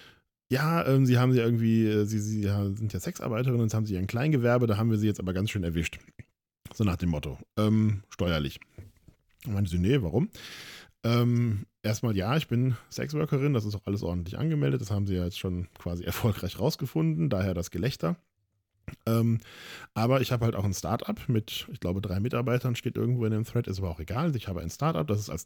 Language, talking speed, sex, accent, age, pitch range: German, 210 wpm, male, German, 10-29, 95-120 Hz